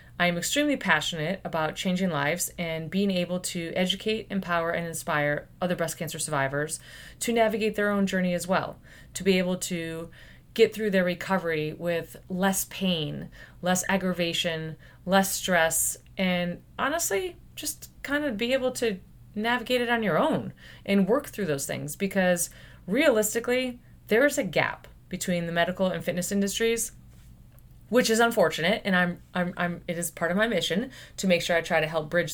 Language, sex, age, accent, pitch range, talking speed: English, female, 30-49, American, 165-200 Hz, 165 wpm